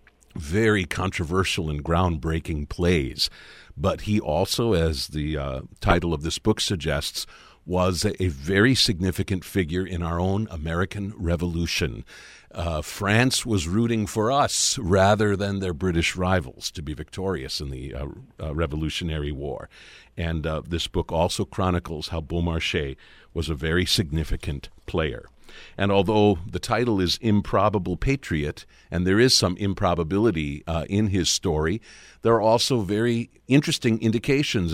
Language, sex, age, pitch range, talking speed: English, male, 50-69, 80-100 Hz, 140 wpm